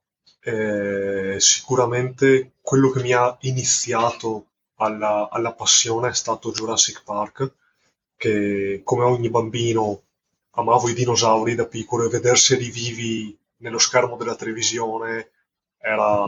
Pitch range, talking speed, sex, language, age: 115-135 Hz, 115 wpm, male, Italian, 20-39